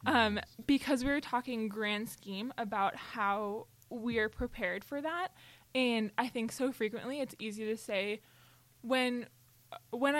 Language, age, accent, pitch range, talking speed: English, 20-39, American, 210-250 Hz, 145 wpm